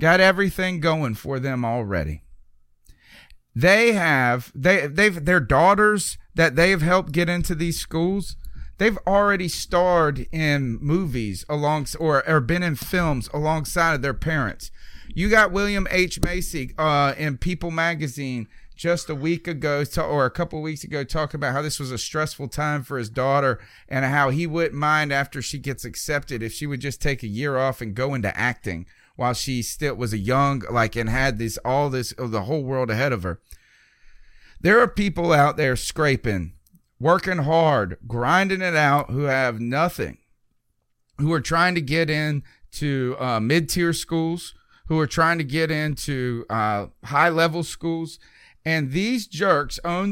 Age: 40-59